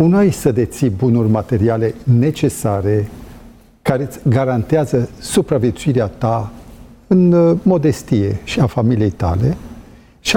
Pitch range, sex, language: 115-150 Hz, male, Romanian